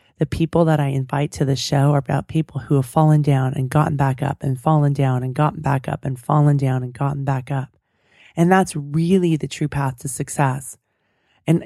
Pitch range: 135-160 Hz